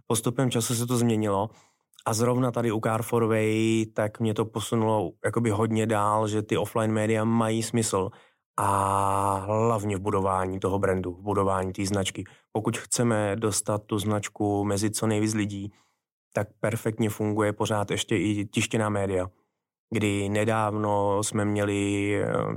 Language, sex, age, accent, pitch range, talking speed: Czech, male, 20-39, native, 100-110 Hz, 145 wpm